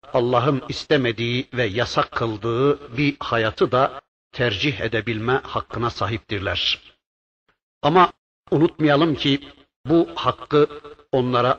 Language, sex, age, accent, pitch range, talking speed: Turkish, male, 60-79, native, 115-150 Hz, 95 wpm